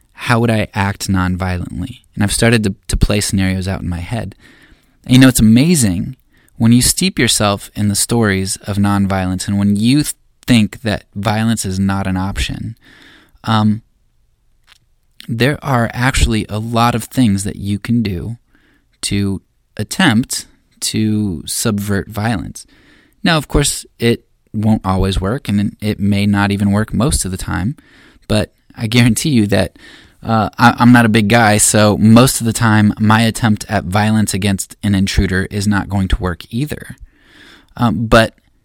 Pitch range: 95-115 Hz